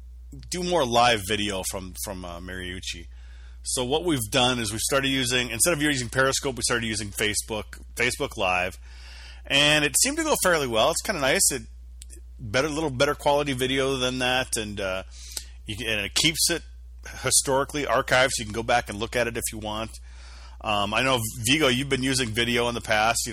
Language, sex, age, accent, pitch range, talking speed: English, male, 30-49, American, 95-135 Hz, 200 wpm